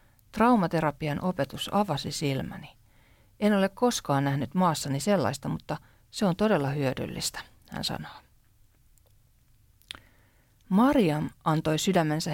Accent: native